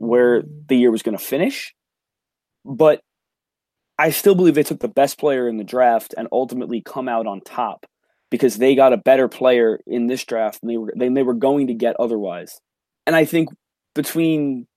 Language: English